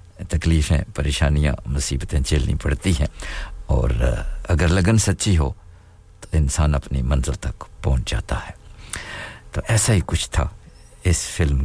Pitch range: 75-90 Hz